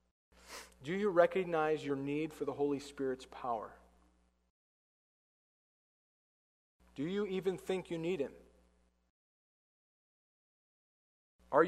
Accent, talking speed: American, 90 wpm